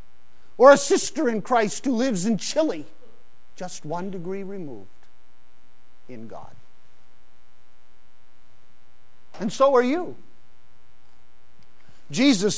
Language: English